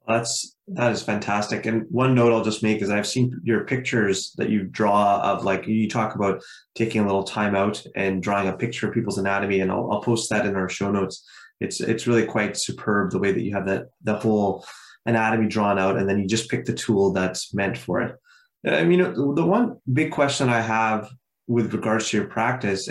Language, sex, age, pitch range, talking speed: English, male, 20-39, 100-120 Hz, 220 wpm